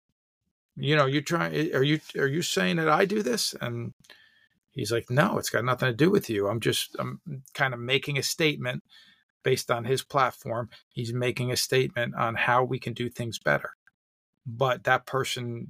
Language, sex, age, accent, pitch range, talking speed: English, male, 50-69, American, 115-140 Hz, 190 wpm